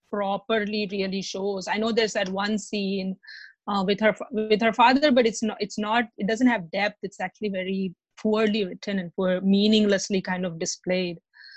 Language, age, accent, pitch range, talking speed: English, 30-49, Indian, 195-245 Hz, 180 wpm